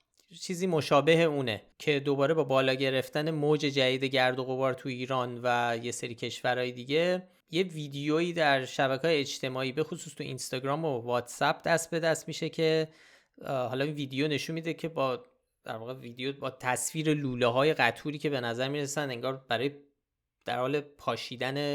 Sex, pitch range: male, 125-160 Hz